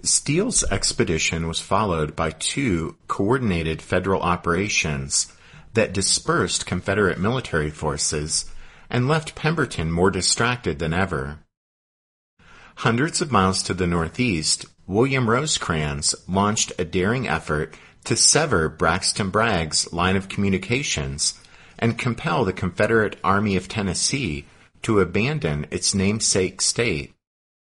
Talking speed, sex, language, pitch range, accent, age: 110 wpm, male, English, 80-110 Hz, American, 50-69